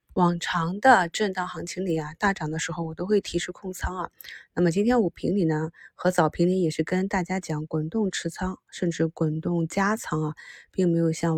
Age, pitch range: 20-39, 165-195 Hz